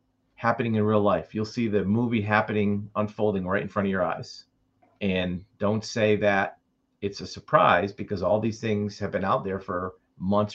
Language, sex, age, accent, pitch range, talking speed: English, male, 40-59, American, 95-115 Hz, 190 wpm